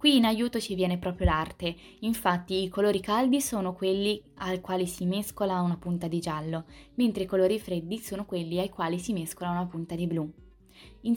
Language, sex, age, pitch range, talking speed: Italian, female, 20-39, 175-215 Hz, 195 wpm